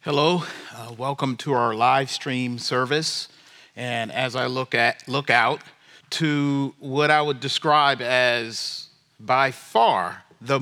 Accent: American